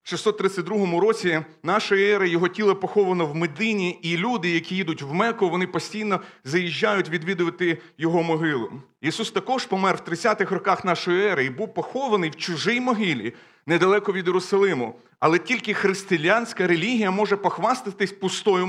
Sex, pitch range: male, 175-215 Hz